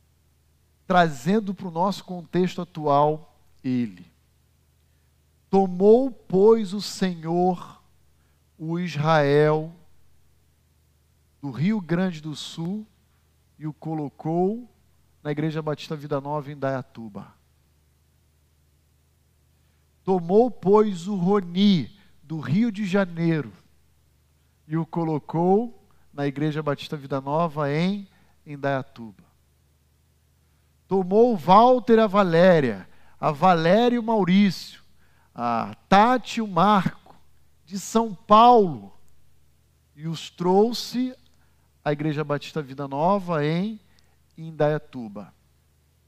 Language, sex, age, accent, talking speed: Portuguese, male, 50-69, Brazilian, 95 wpm